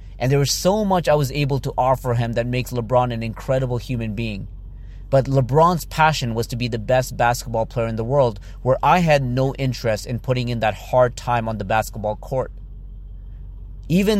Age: 30-49